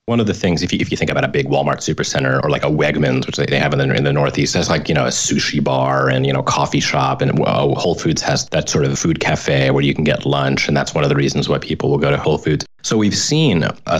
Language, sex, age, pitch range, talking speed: English, male, 30-49, 70-85 Hz, 305 wpm